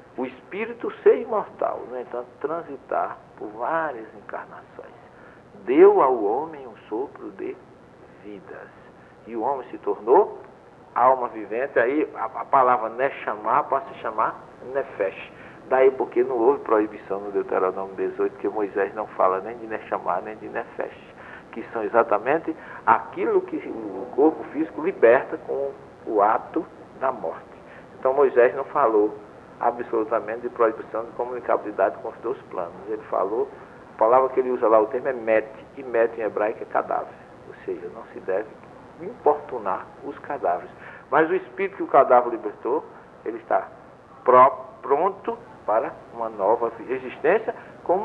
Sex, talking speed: male, 145 wpm